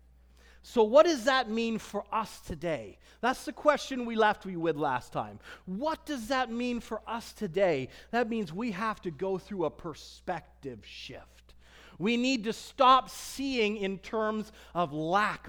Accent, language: American, English